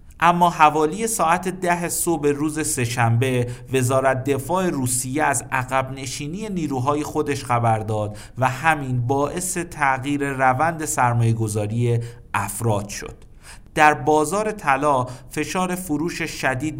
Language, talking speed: Persian, 110 wpm